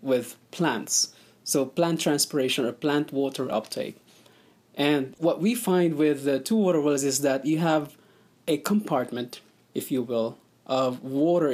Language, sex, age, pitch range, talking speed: English, male, 20-39, 135-165 Hz, 150 wpm